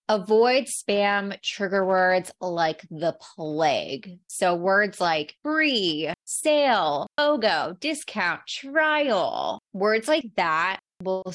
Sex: female